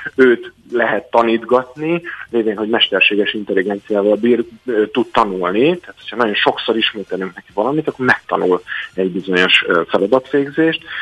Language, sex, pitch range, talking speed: Hungarian, male, 110-145 Hz, 130 wpm